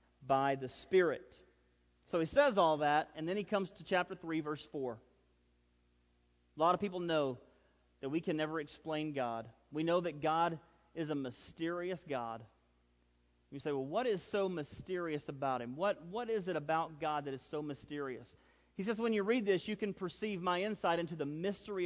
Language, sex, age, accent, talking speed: English, male, 40-59, American, 190 wpm